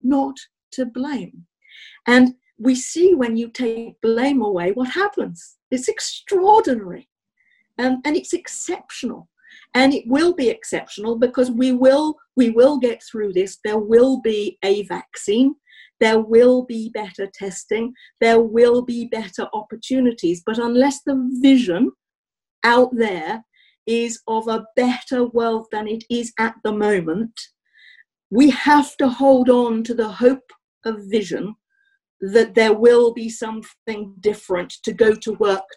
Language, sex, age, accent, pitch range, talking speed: English, female, 50-69, British, 210-260 Hz, 140 wpm